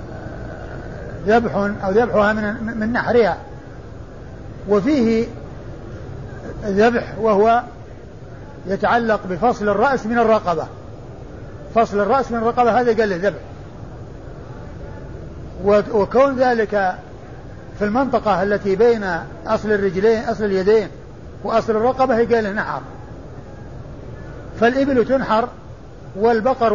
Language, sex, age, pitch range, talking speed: Arabic, male, 50-69, 205-250 Hz, 90 wpm